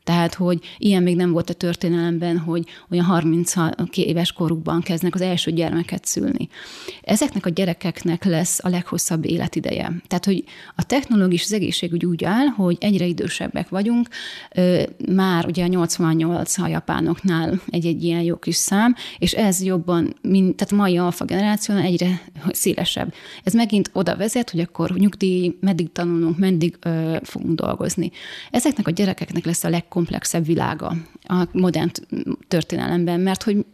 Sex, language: female, Hungarian